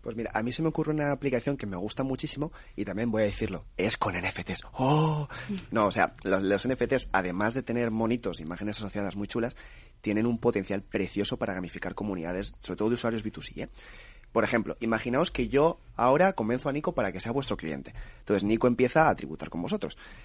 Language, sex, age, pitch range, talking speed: Spanish, male, 30-49, 105-140 Hz, 205 wpm